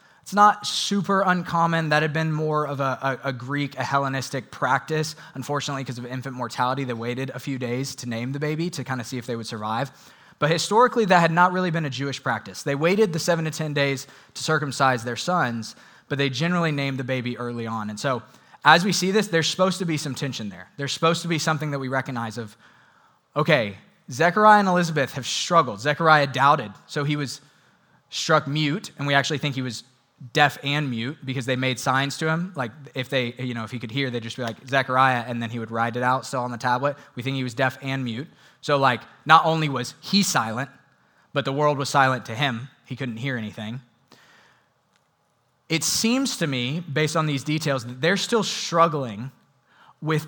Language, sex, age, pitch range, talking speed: English, male, 20-39, 130-155 Hz, 215 wpm